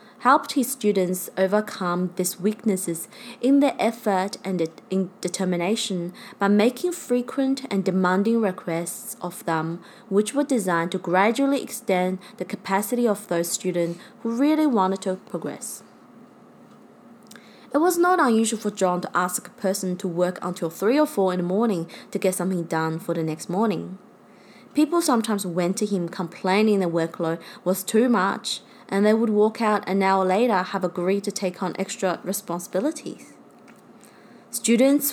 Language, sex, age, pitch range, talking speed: English, female, 20-39, 185-235 Hz, 150 wpm